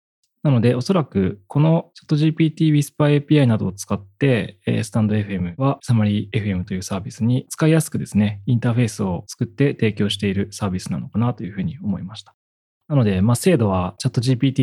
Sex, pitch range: male, 100-150 Hz